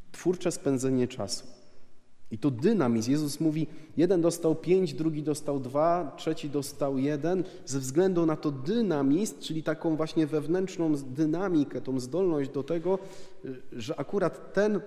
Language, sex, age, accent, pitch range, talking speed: Polish, male, 30-49, native, 115-150 Hz, 135 wpm